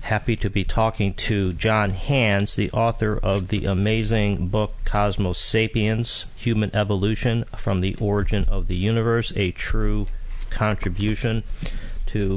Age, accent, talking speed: 40-59, American, 130 wpm